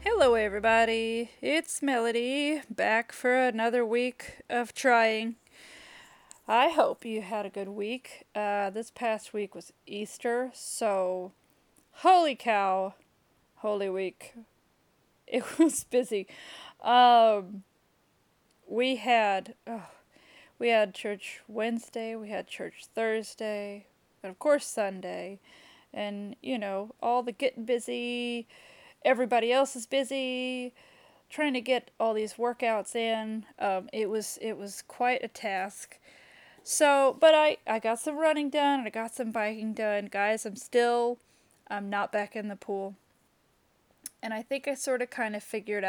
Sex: female